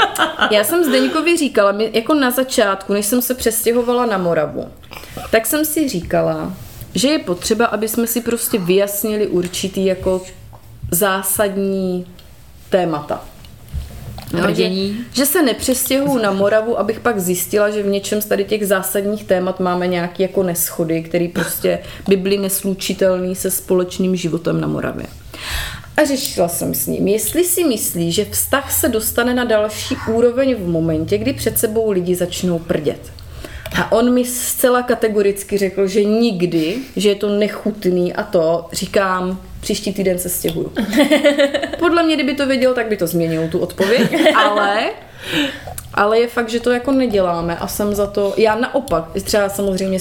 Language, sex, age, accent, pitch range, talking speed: Czech, female, 30-49, native, 180-235 Hz, 155 wpm